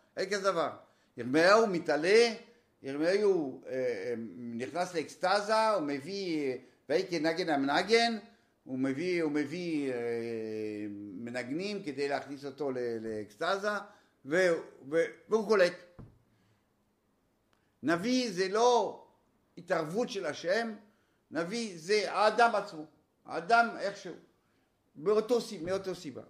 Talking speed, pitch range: 105 wpm, 125-205 Hz